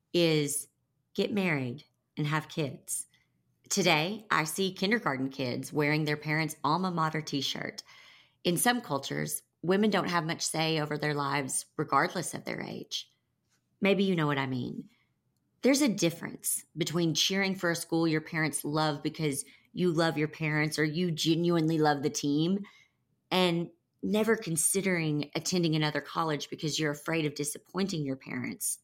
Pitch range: 150-185 Hz